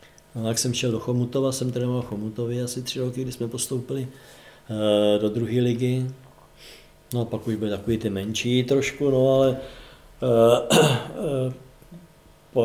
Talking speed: 145 wpm